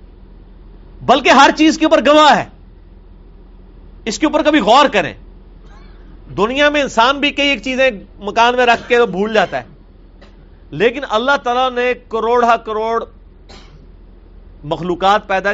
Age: 40-59